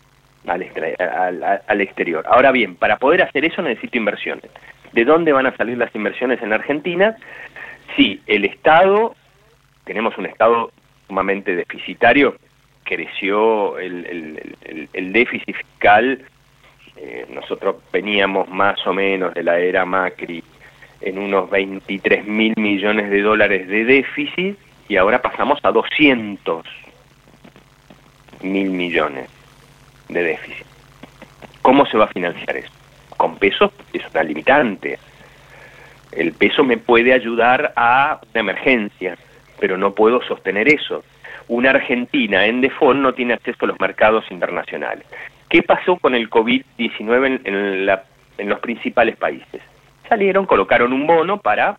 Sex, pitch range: male, 100-140 Hz